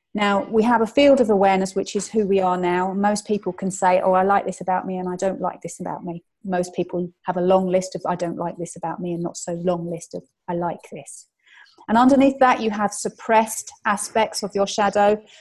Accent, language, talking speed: British, English, 240 wpm